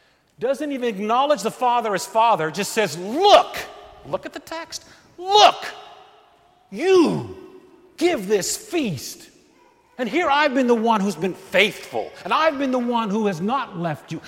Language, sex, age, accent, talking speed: English, male, 50-69, American, 160 wpm